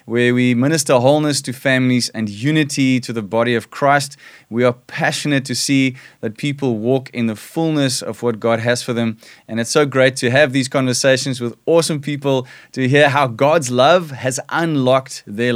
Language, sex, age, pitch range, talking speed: English, male, 20-39, 120-140 Hz, 190 wpm